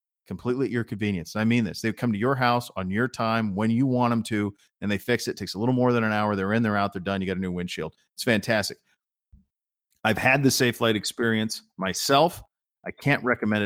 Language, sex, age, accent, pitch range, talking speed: English, male, 40-59, American, 105-140 Hz, 245 wpm